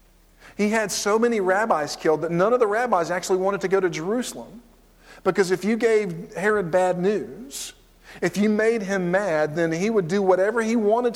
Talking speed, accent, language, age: 195 wpm, American, English, 50-69